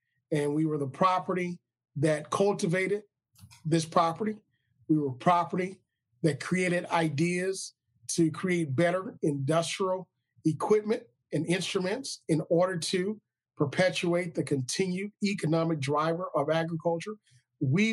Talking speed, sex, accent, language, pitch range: 110 wpm, male, American, English, 135-190 Hz